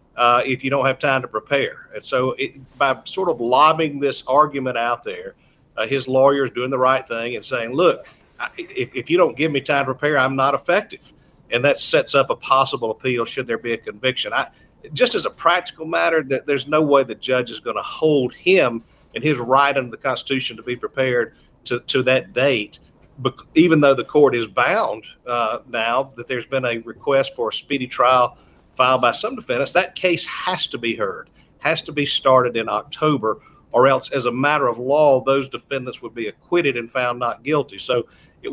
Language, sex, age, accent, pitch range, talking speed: English, male, 50-69, American, 125-145 Hz, 210 wpm